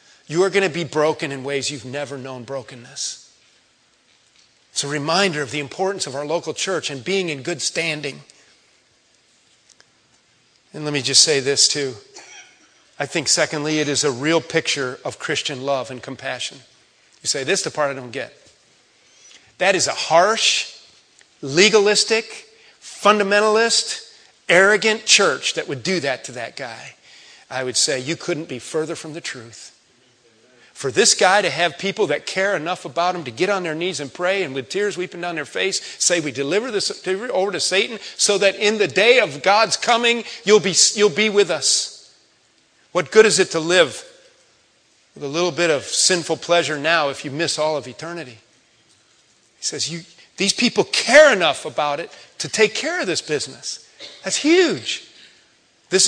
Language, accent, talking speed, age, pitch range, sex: English, American, 175 wpm, 40-59, 145-200 Hz, male